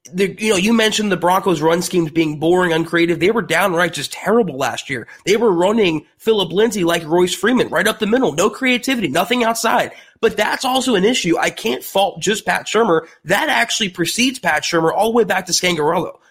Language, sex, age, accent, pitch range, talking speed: English, male, 30-49, American, 170-230 Hz, 210 wpm